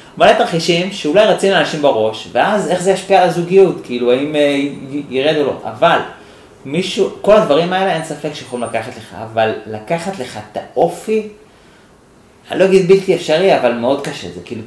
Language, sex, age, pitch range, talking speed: Hebrew, male, 30-49, 120-175 Hz, 185 wpm